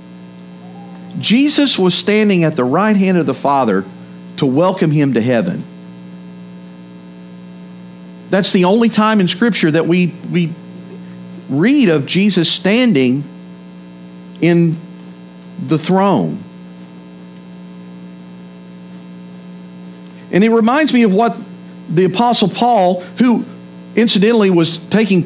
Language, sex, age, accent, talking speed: English, male, 50-69, American, 105 wpm